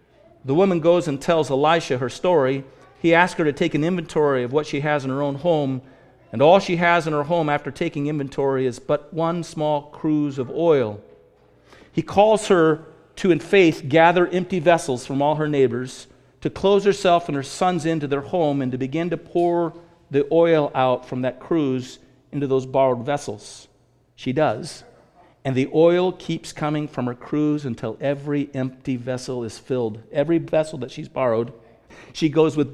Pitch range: 130-165 Hz